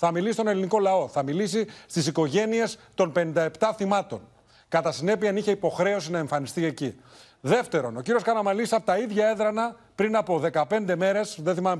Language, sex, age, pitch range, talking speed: Greek, male, 40-59, 160-215 Hz, 170 wpm